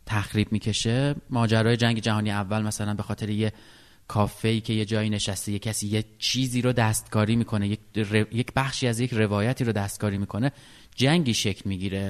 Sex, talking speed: male, 175 wpm